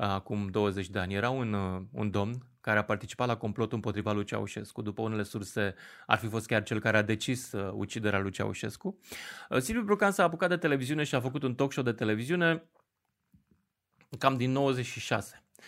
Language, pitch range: Romanian, 110-165 Hz